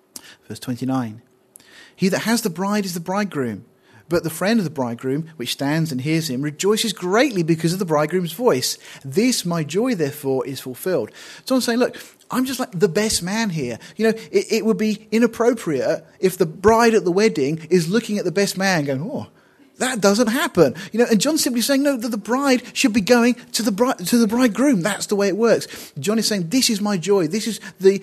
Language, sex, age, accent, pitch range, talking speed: English, male, 30-49, British, 145-225 Hz, 220 wpm